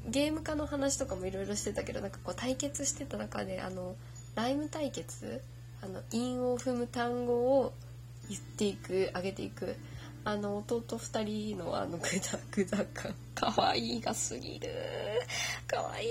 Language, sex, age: Japanese, female, 20-39